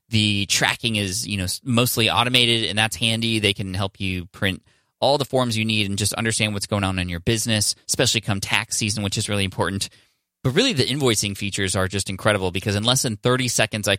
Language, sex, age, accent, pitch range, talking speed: English, male, 20-39, American, 100-120 Hz, 225 wpm